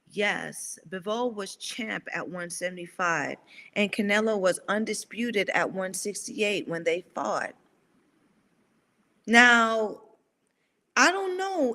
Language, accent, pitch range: English, American, 205-265 Hz